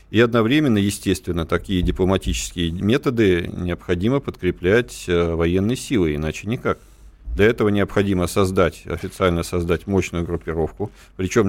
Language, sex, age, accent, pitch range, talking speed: Russian, male, 40-59, native, 85-110 Hz, 110 wpm